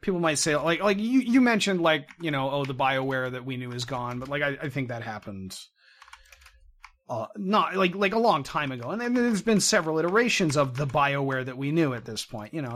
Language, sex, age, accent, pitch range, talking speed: English, male, 30-49, American, 115-155 Hz, 240 wpm